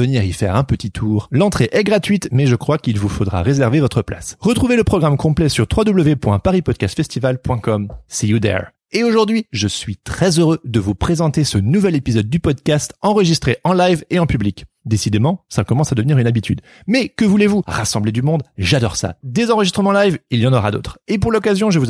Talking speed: 205 wpm